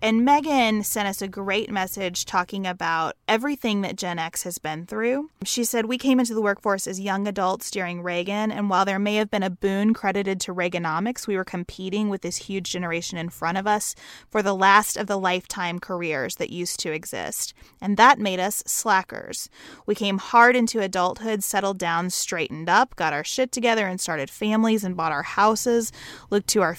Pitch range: 180-215 Hz